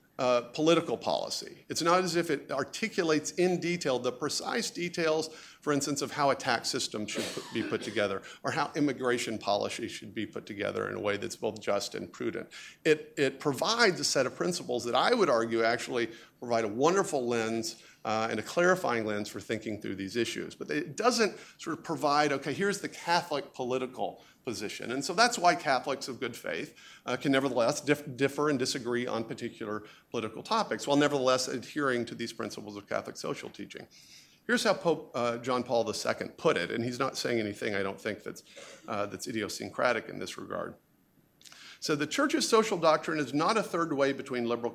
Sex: male